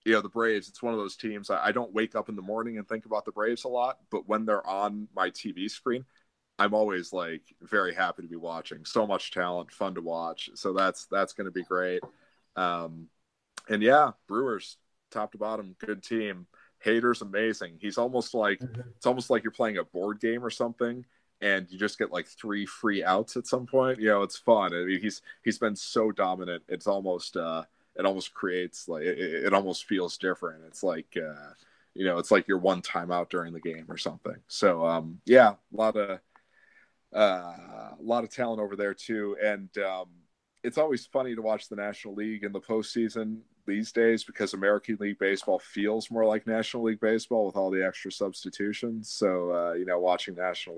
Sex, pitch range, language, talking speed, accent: male, 90-110 Hz, English, 205 wpm, American